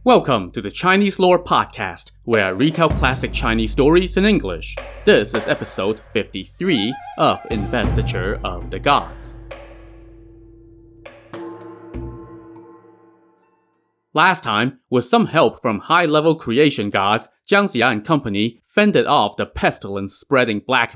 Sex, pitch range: male, 105-145 Hz